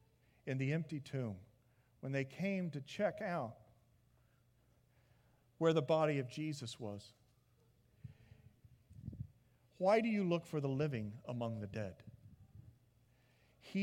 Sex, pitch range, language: male, 115-160 Hz, English